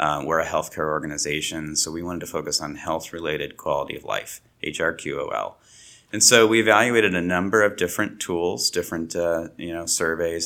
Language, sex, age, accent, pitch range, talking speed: English, male, 30-49, American, 80-90 Hz, 195 wpm